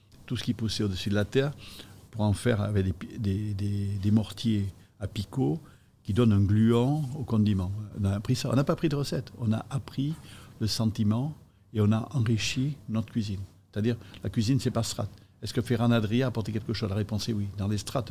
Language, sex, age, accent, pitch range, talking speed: French, male, 60-79, French, 100-120 Hz, 210 wpm